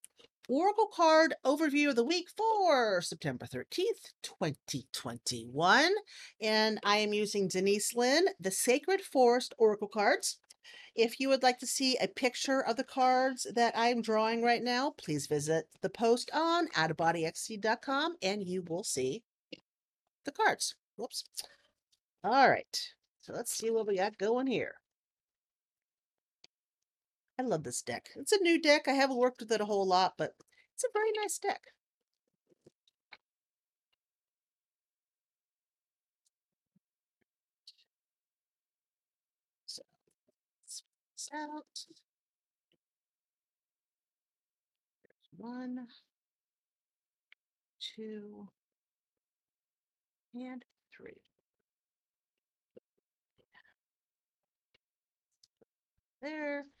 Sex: female